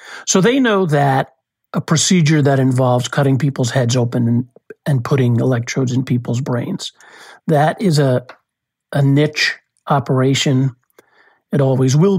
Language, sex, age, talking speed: English, male, 50-69, 140 wpm